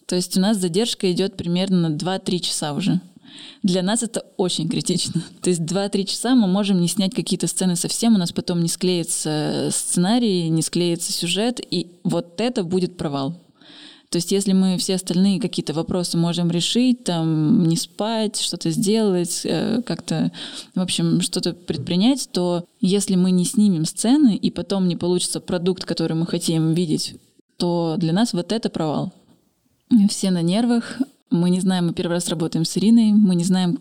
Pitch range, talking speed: 170-215 Hz, 170 wpm